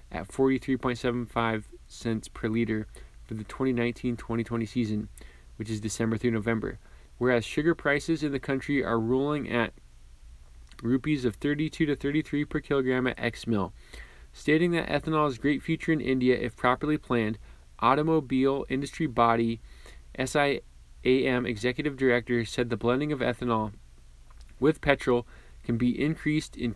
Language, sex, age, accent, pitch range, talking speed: English, male, 20-39, American, 110-140 Hz, 135 wpm